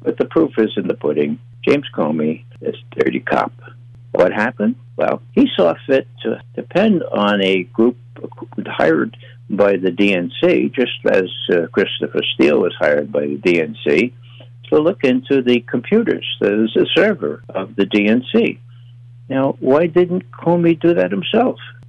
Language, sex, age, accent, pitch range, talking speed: English, male, 60-79, American, 110-145 Hz, 150 wpm